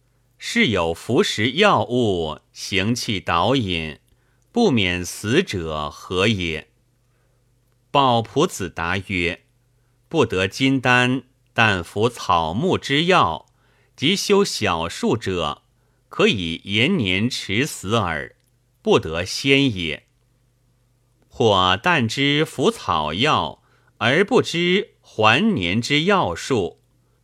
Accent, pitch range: native, 95-130 Hz